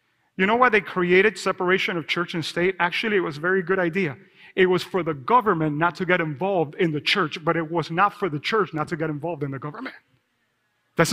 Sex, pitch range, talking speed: male, 180-250 Hz, 235 wpm